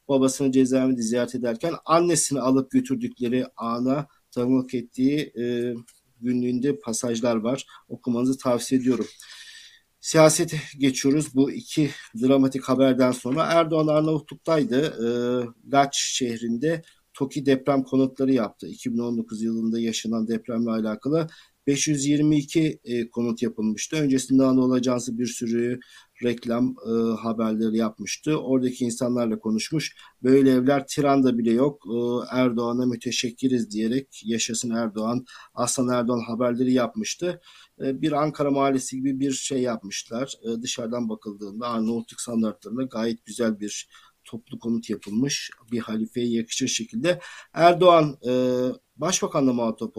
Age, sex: 50-69, male